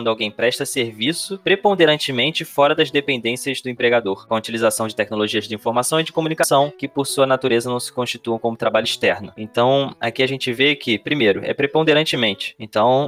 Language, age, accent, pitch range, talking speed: Portuguese, 20-39, Brazilian, 110-135 Hz, 190 wpm